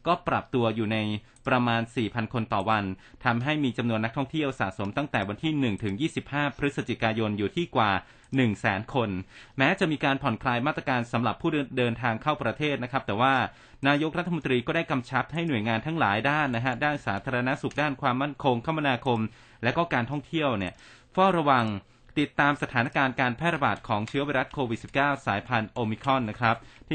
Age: 20-39